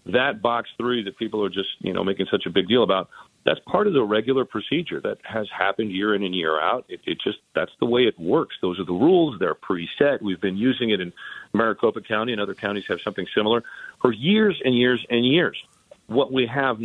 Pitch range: 95-125 Hz